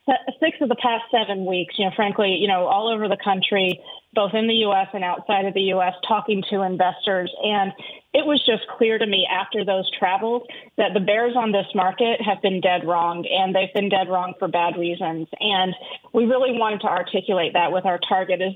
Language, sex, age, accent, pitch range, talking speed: English, female, 30-49, American, 185-215 Hz, 215 wpm